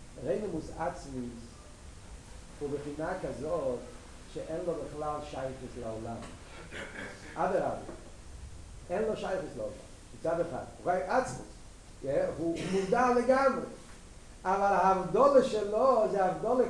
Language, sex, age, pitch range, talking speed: Hebrew, male, 40-59, 190-265 Hz, 105 wpm